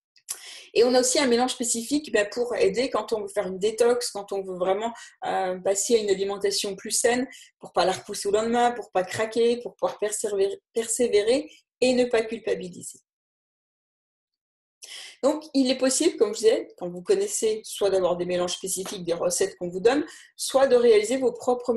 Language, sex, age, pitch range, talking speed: French, female, 30-49, 200-270 Hz, 185 wpm